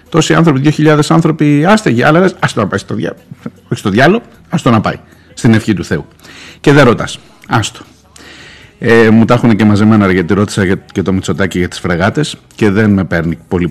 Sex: male